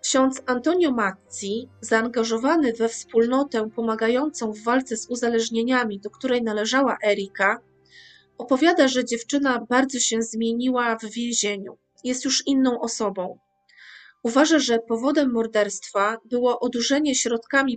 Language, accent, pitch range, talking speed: Polish, native, 225-265 Hz, 115 wpm